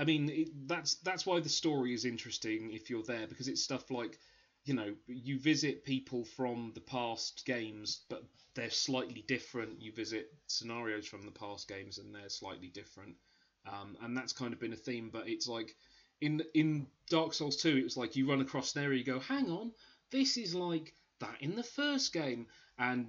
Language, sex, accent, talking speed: English, male, British, 205 wpm